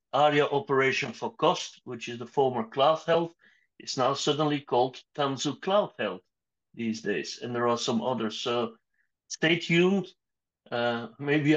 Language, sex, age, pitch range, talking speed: English, male, 50-69, 120-150 Hz, 150 wpm